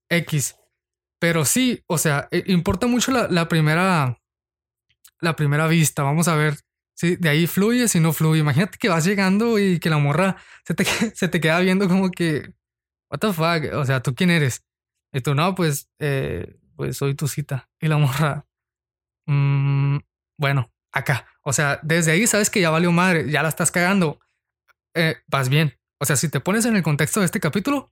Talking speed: 190 wpm